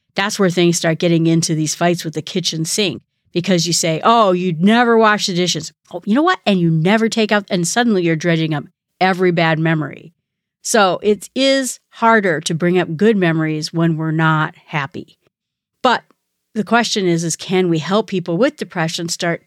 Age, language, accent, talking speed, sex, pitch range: 40-59, English, American, 195 wpm, female, 160-200 Hz